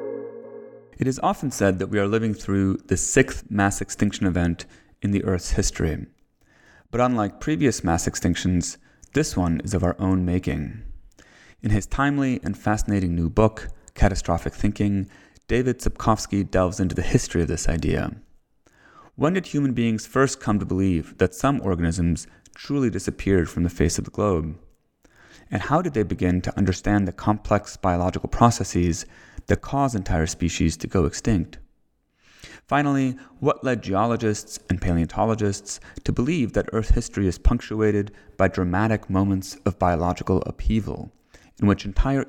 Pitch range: 90-110 Hz